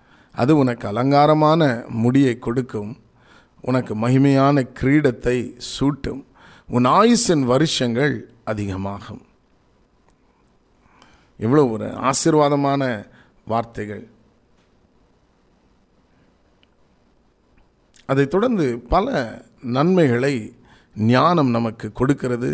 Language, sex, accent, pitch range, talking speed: Tamil, male, native, 110-135 Hz, 65 wpm